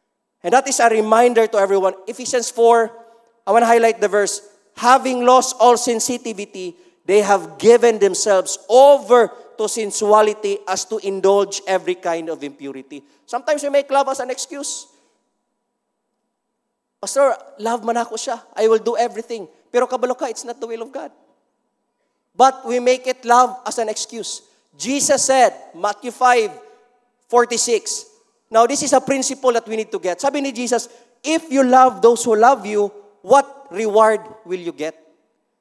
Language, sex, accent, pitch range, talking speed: English, male, Filipino, 205-255 Hz, 160 wpm